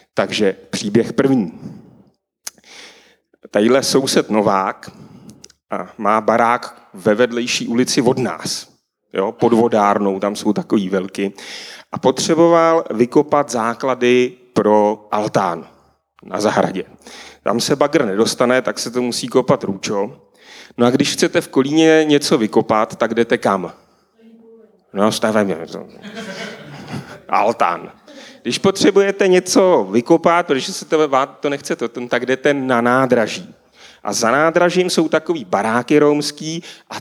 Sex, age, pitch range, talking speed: male, 30-49, 120-180 Hz, 125 wpm